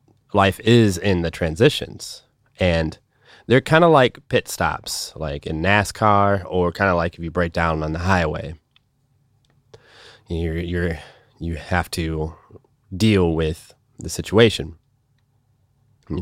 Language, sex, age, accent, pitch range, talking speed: English, male, 20-39, American, 85-125 Hz, 135 wpm